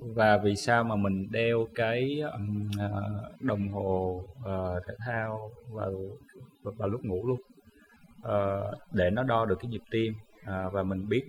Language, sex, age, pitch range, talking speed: Vietnamese, male, 20-39, 95-115 Hz, 160 wpm